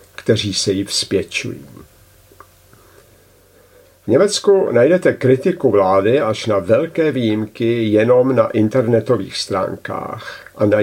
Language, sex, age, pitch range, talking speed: Czech, male, 50-69, 105-125 Hz, 105 wpm